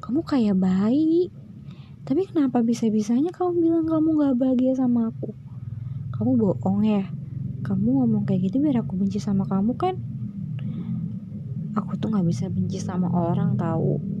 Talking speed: 145 wpm